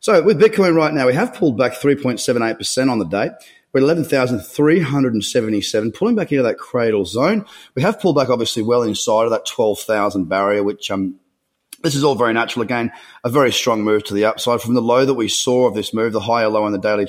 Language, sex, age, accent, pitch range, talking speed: English, male, 30-49, Australian, 110-145 Hz, 220 wpm